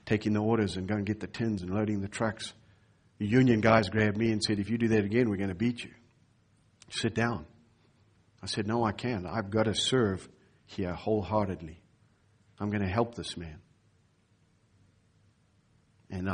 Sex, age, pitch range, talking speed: male, 50-69, 100-120 Hz, 185 wpm